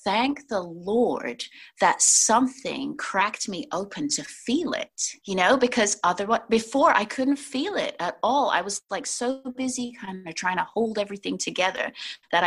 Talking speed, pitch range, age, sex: 170 wpm, 175-250 Hz, 30-49, female